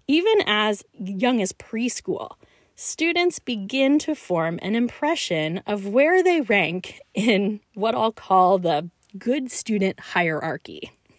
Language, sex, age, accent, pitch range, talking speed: English, female, 30-49, American, 200-285 Hz, 125 wpm